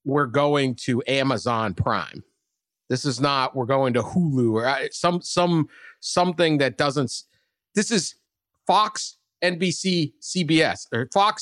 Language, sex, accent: English, male, American